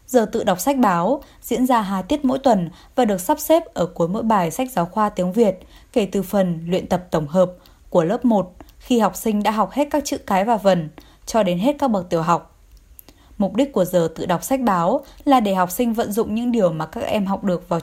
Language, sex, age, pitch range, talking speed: Vietnamese, female, 20-39, 180-235 Hz, 250 wpm